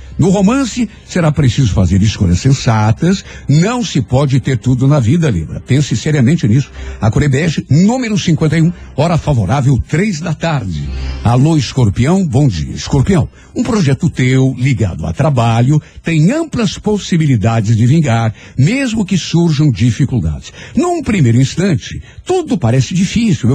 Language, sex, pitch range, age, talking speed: Portuguese, male, 115-170 Hz, 60-79, 135 wpm